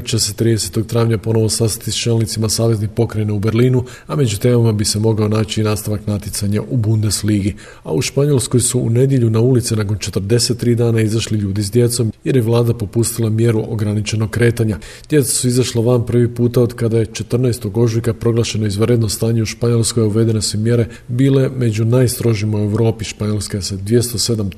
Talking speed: 180 wpm